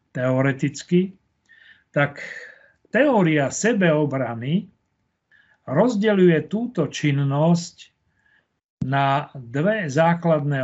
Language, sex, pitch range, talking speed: Slovak, male, 140-175 Hz, 55 wpm